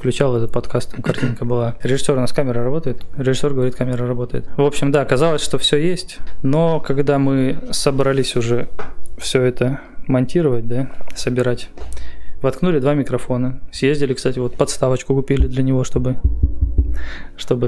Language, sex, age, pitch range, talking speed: Russian, male, 20-39, 120-140 Hz, 150 wpm